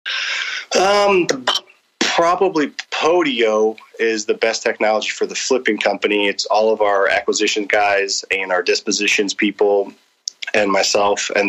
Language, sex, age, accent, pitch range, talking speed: English, male, 20-39, American, 95-115 Hz, 125 wpm